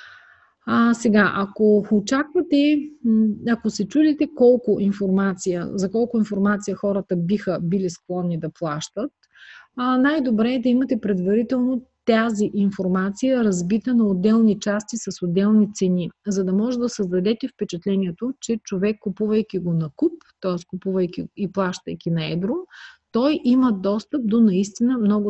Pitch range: 185-240 Hz